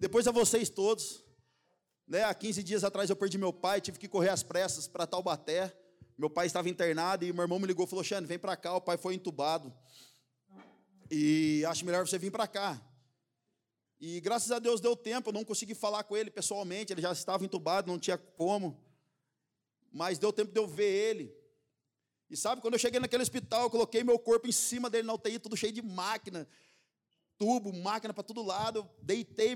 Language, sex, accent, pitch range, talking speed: Portuguese, male, Brazilian, 180-235 Hz, 200 wpm